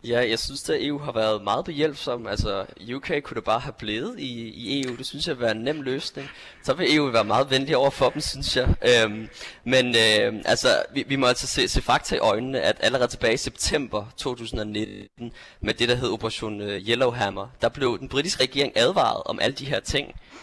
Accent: native